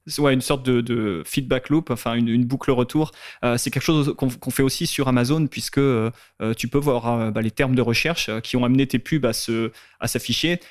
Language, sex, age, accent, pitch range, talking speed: French, male, 20-39, French, 120-145 Hz, 235 wpm